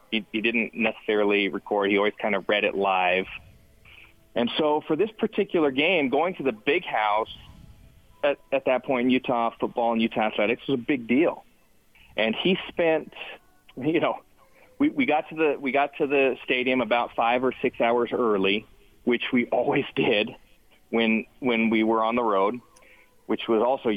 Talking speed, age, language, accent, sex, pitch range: 180 wpm, 40-59, English, American, male, 110-135 Hz